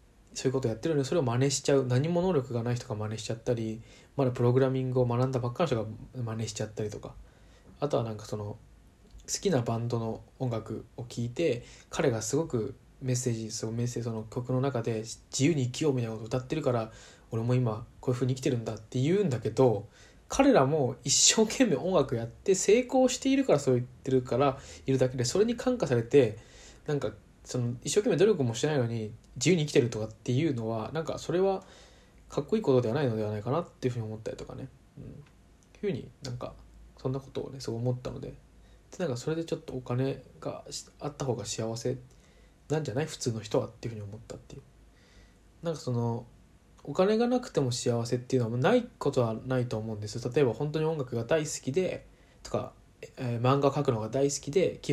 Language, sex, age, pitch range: Japanese, male, 20-39, 115-140 Hz